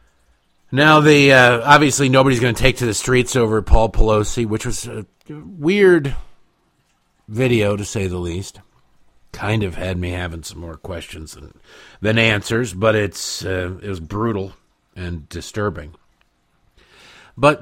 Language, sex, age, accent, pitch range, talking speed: English, male, 50-69, American, 95-130 Hz, 145 wpm